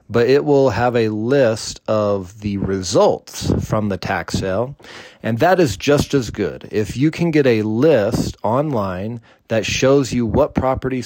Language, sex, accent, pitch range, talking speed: English, male, American, 100-130 Hz, 170 wpm